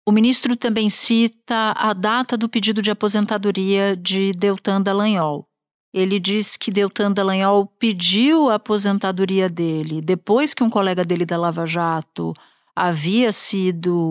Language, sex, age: Portuguese, female, 50-69